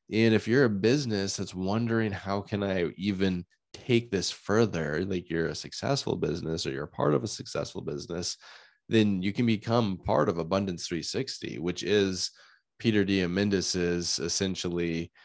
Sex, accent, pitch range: male, American, 80-100 Hz